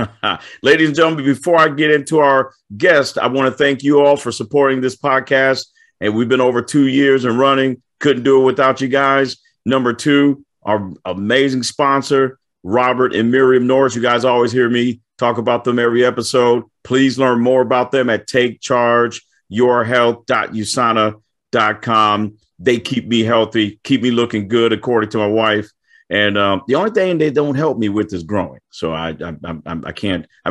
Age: 40-59